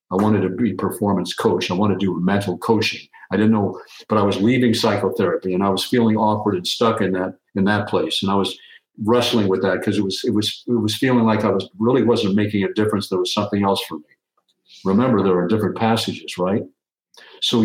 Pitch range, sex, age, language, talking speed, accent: 95-115 Hz, male, 50-69, English, 230 wpm, American